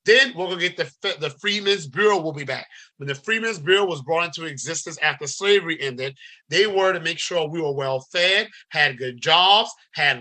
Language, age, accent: English, 30-49, American